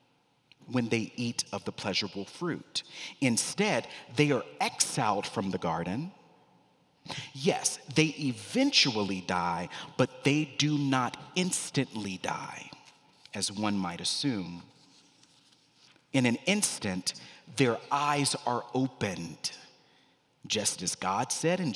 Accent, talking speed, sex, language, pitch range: American, 110 wpm, male, English, 105-150 Hz